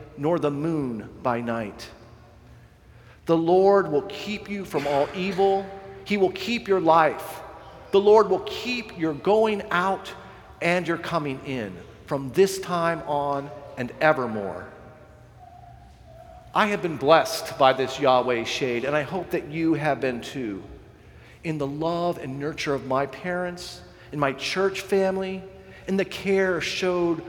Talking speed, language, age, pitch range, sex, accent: 145 wpm, English, 40-59, 135-190 Hz, male, American